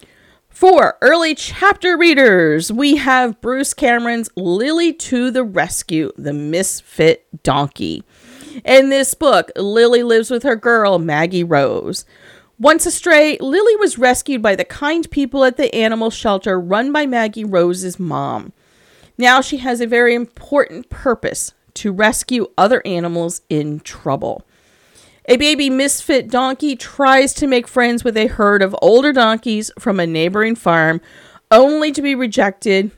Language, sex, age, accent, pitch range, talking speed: English, female, 40-59, American, 195-275 Hz, 140 wpm